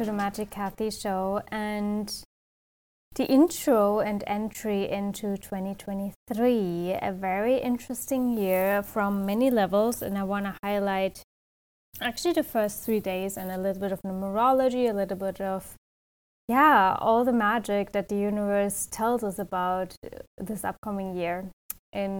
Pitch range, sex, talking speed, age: 185-210 Hz, female, 140 wpm, 20-39